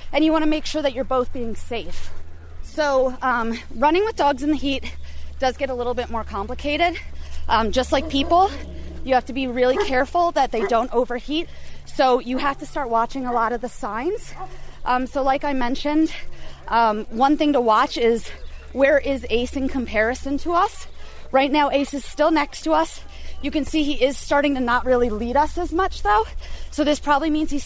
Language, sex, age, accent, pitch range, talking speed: English, female, 30-49, American, 240-295 Hz, 210 wpm